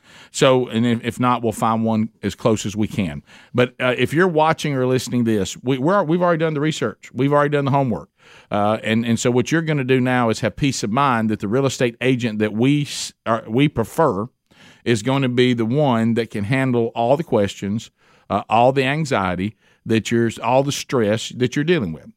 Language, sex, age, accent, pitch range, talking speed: English, male, 50-69, American, 120-145 Hz, 225 wpm